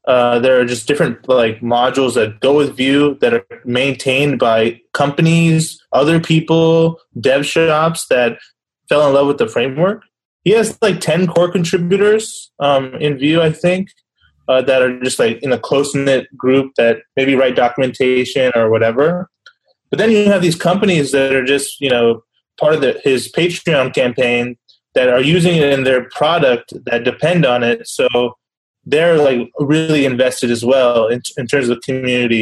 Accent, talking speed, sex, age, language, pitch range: American, 170 wpm, male, 20-39, English, 120-160 Hz